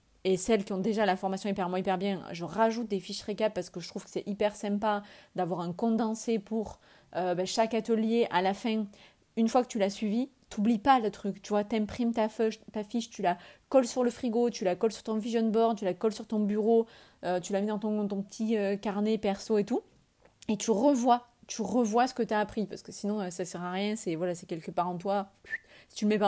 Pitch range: 185-225 Hz